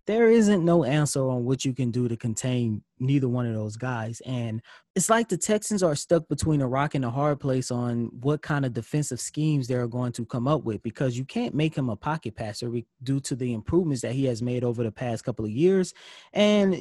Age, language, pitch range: 20-39, English, 130-175 Hz